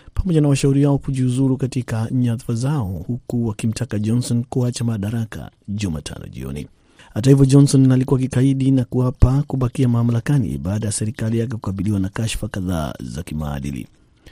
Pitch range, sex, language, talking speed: 105-125 Hz, male, Swahili, 145 wpm